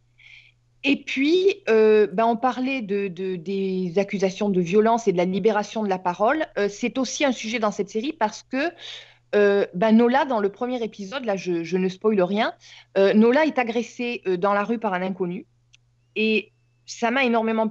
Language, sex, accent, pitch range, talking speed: French, female, French, 180-240 Hz, 195 wpm